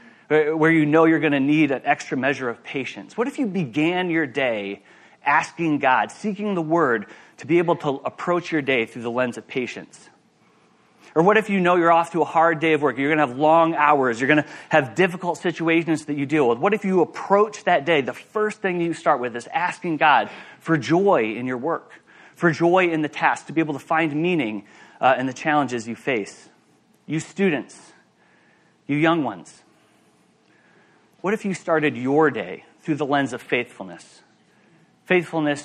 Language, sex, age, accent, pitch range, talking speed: English, male, 30-49, American, 140-175 Hz, 195 wpm